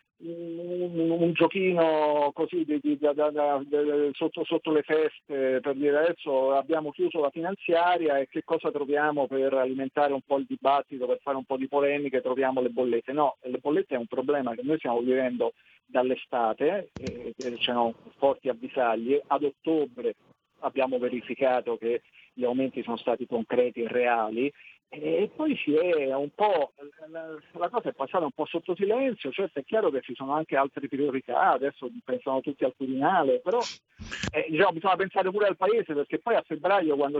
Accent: native